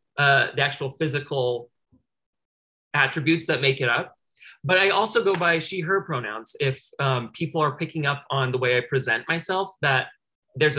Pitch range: 130-160 Hz